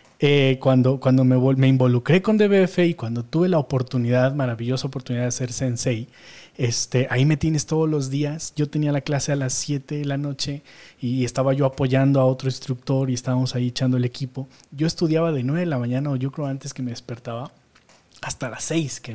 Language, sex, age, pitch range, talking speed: Spanish, male, 30-49, 125-150 Hz, 215 wpm